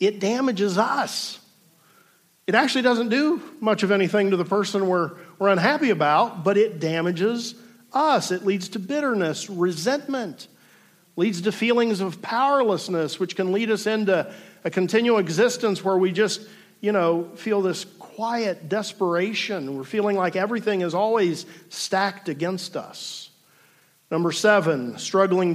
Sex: male